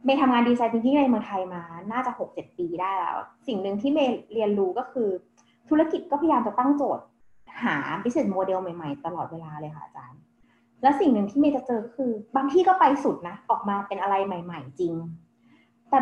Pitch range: 190-270 Hz